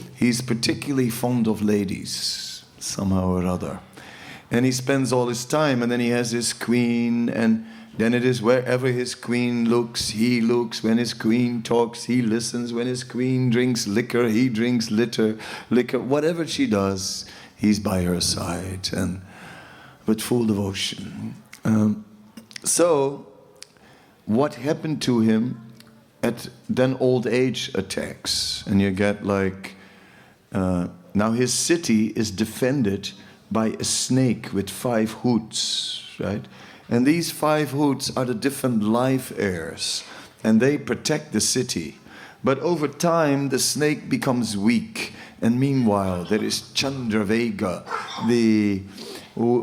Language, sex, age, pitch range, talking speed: English, male, 50-69, 105-125 Hz, 135 wpm